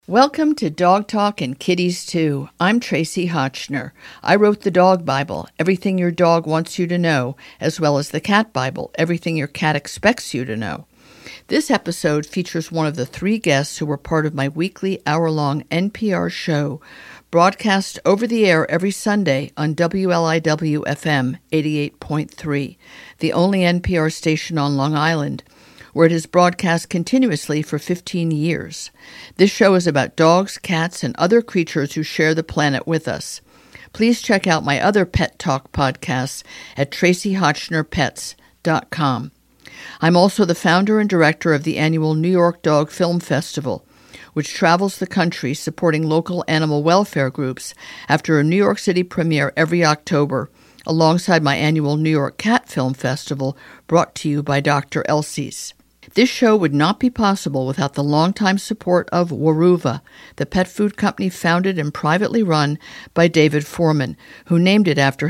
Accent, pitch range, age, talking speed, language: American, 150-180 Hz, 50-69, 160 wpm, English